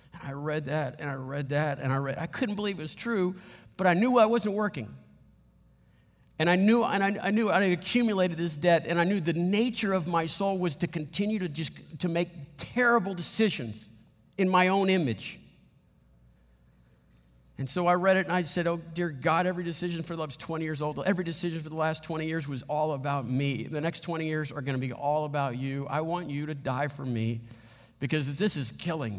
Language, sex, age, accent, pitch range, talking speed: English, male, 50-69, American, 120-170 Hz, 220 wpm